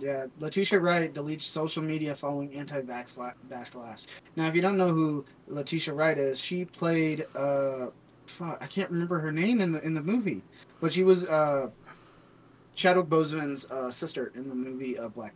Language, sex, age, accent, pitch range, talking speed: English, male, 20-39, American, 135-165 Hz, 170 wpm